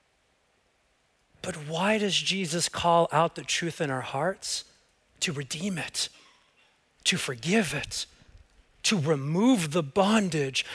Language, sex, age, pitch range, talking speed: English, male, 30-49, 165-195 Hz, 115 wpm